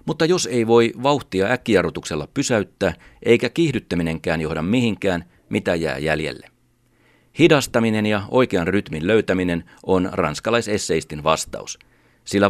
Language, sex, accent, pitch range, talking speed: Finnish, male, native, 90-120 Hz, 110 wpm